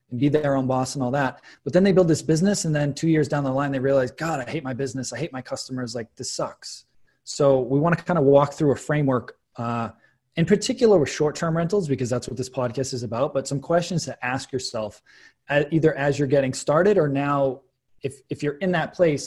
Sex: male